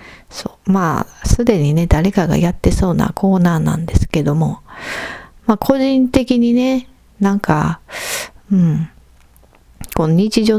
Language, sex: Japanese, female